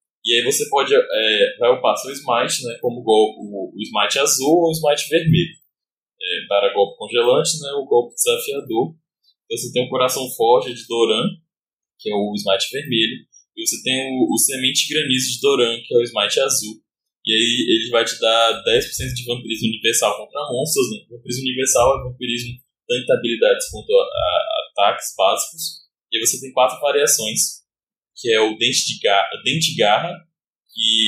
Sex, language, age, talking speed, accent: male, Portuguese, 10-29, 180 wpm, Brazilian